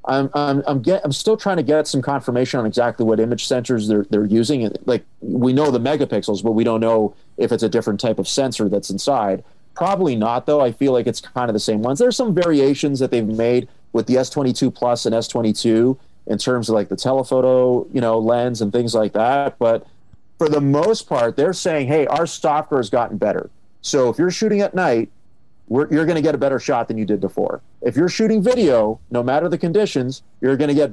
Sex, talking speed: male, 220 wpm